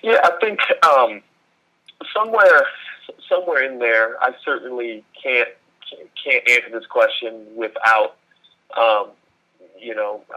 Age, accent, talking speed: 30-49, American, 110 wpm